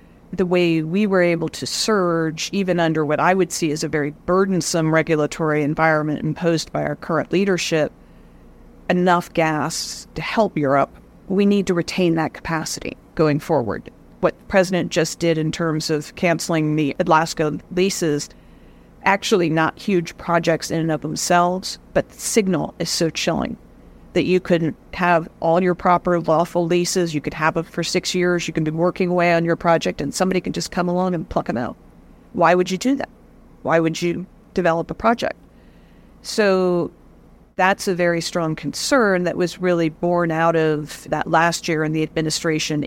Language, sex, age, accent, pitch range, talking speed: English, female, 40-59, American, 155-180 Hz, 175 wpm